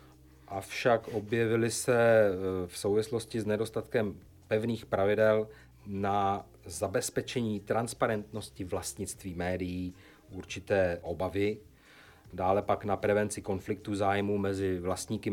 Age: 30-49